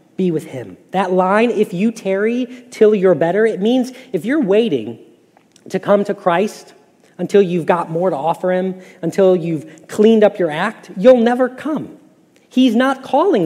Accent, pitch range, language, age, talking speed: American, 165-210 Hz, English, 40-59, 175 wpm